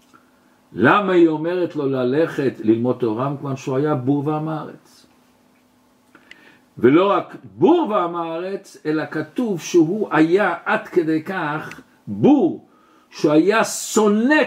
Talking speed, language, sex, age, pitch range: 120 wpm, Hebrew, male, 60-79, 160-260 Hz